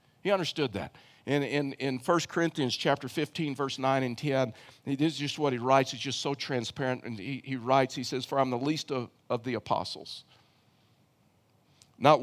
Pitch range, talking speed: 120-140 Hz, 190 wpm